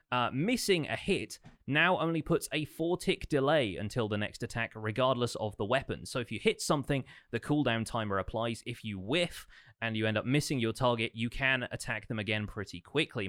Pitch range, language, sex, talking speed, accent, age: 105-140 Hz, English, male, 205 wpm, British, 30-49